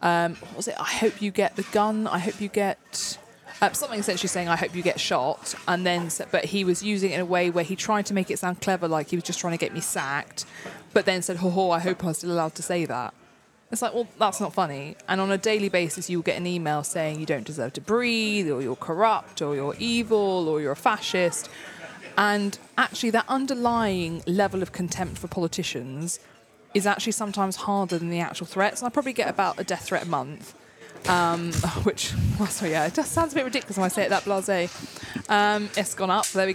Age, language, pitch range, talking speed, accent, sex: 20-39, English, 165-200 Hz, 235 wpm, British, female